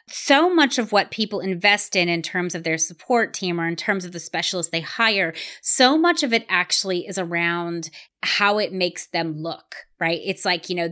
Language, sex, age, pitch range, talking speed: English, female, 30-49, 175-220 Hz, 210 wpm